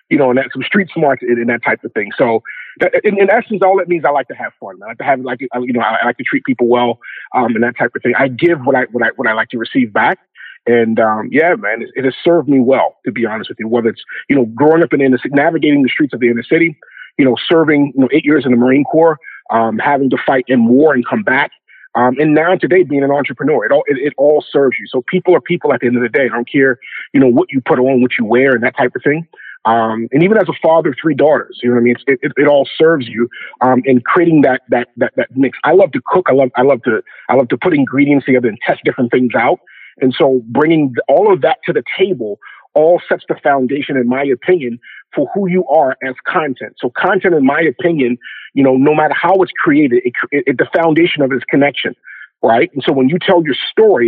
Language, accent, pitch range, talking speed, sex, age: English, American, 125-165 Hz, 275 wpm, male, 40-59